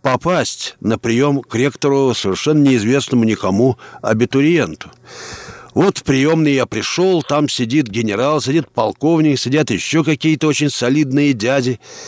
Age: 50-69